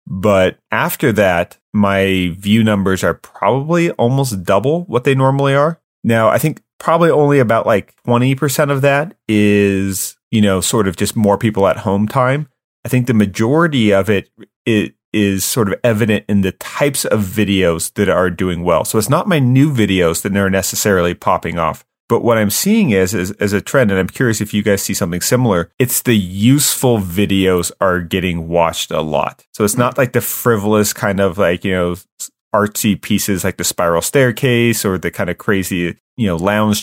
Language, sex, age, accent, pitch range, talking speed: English, male, 30-49, American, 95-120 Hz, 190 wpm